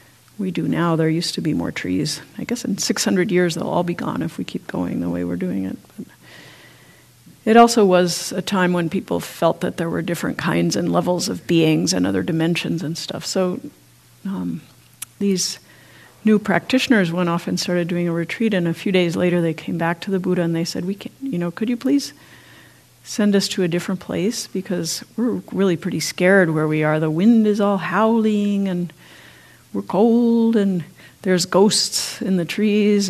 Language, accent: English, American